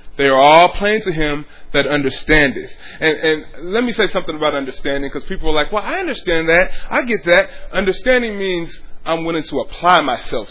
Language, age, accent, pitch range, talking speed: English, 20-39, American, 140-200 Hz, 195 wpm